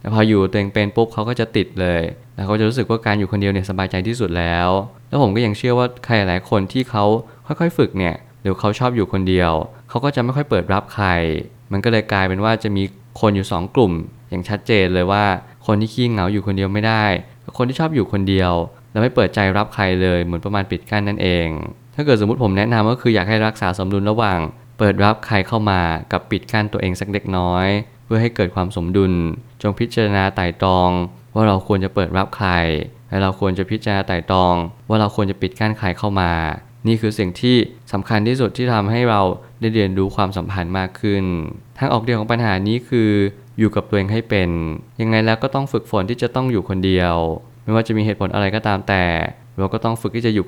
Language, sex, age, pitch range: Thai, male, 20-39, 95-115 Hz